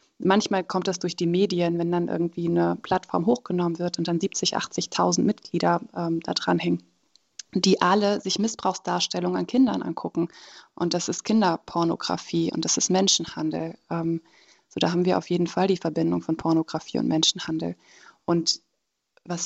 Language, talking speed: German, 160 wpm